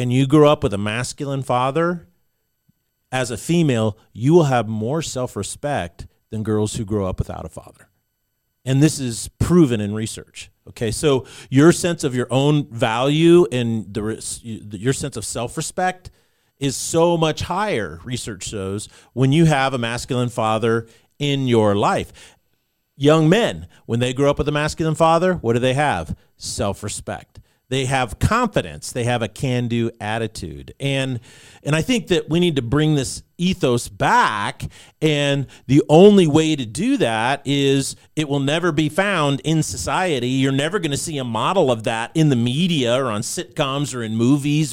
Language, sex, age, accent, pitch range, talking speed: English, male, 40-59, American, 115-155 Hz, 170 wpm